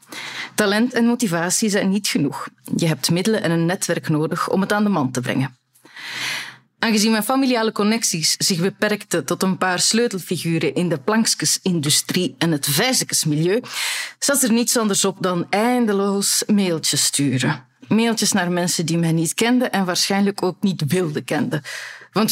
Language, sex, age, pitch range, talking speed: Dutch, female, 30-49, 165-215 Hz, 160 wpm